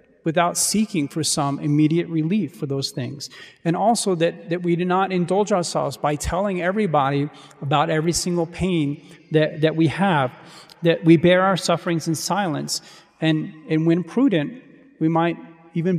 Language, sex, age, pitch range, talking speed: English, male, 40-59, 155-185 Hz, 160 wpm